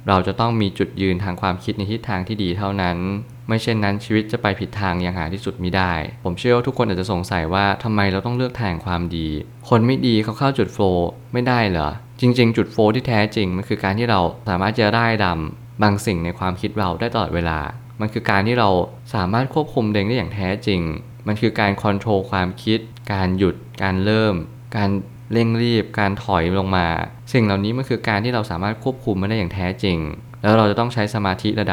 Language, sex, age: Thai, male, 20-39